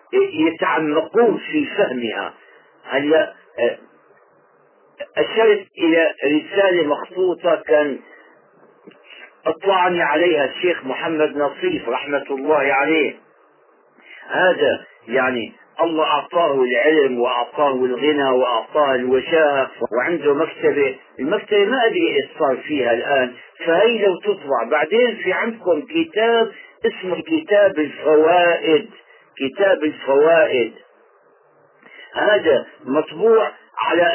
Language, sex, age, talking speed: Arabic, male, 50-69, 85 wpm